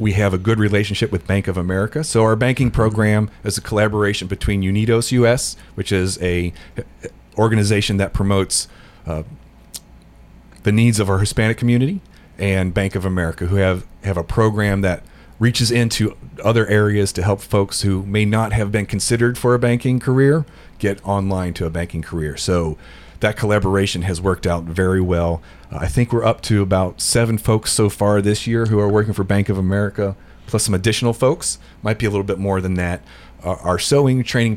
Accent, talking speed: American, 190 wpm